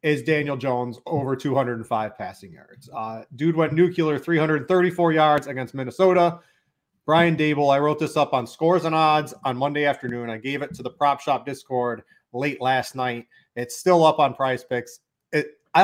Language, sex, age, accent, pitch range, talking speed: English, male, 30-49, American, 130-155 Hz, 175 wpm